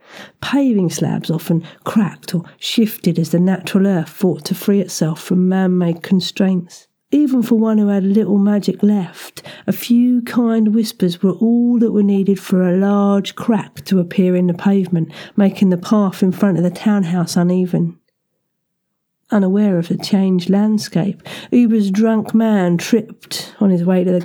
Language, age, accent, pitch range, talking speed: English, 50-69, British, 180-215 Hz, 165 wpm